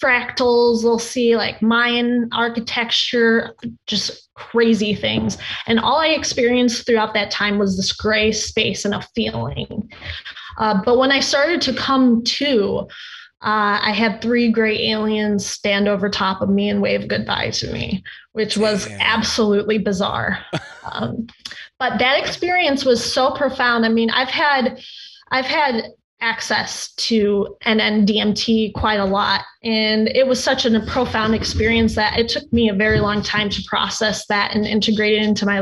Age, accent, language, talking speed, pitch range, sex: 20-39, American, English, 160 wpm, 210-235 Hz, female